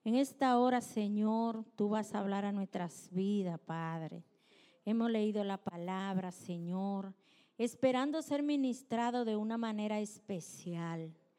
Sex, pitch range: female, 210-275 Hz